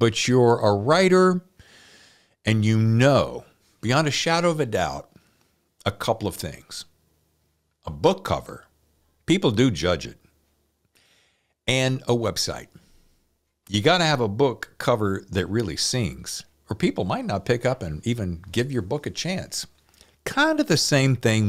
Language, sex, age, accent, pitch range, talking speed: English, male, 50-69, American, 85-130 Hz, 150 wpm